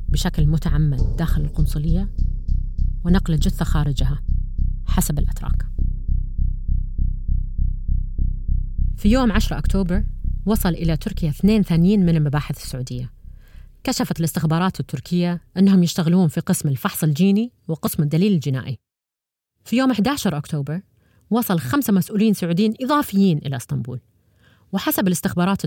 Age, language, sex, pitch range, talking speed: 30-49, Arabic, female, 145-195 Hz, 110 wpm